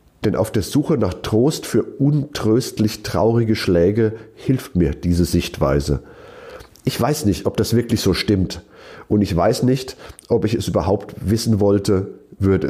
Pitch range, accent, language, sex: 90-130 Hz, German, German, male